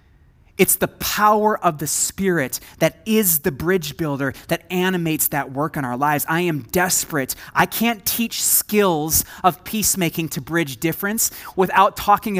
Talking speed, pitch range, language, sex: 155 wpm, 150-195 Hz, English, male